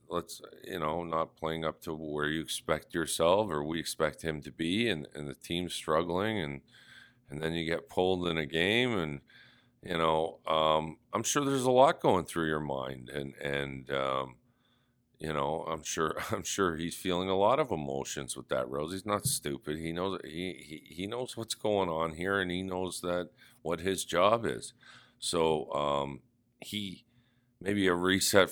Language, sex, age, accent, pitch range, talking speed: English, male, 50-69, American, 75-95 Hz, 185 wpm